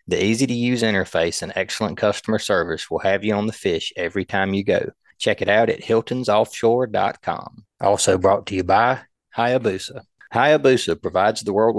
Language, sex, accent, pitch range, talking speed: English, male, American, 95-115 Hz, 165 wpm